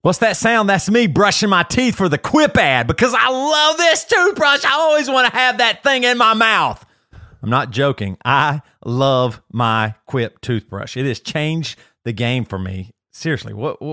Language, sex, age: English, male, 40-59